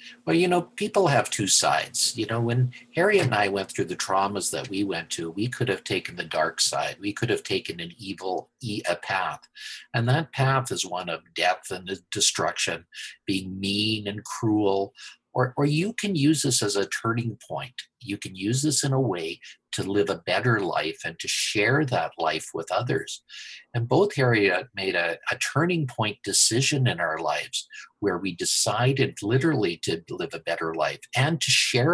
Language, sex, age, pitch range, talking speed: English, male, 50-69, 100-150 Hz, 195 wpm